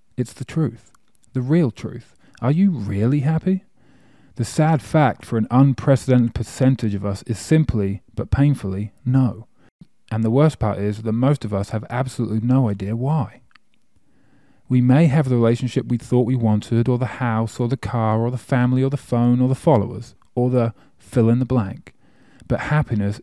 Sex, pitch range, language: male, 110-130 Hz, English